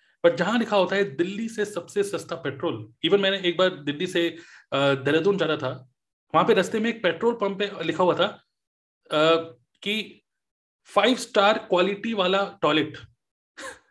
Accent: native